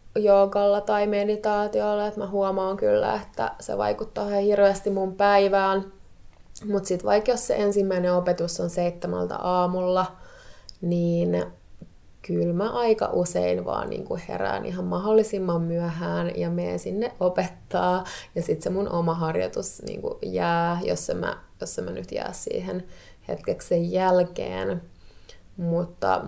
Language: Finnish